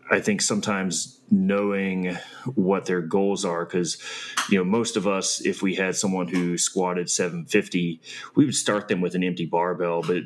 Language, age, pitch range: English, 30-49, 85-95 Hz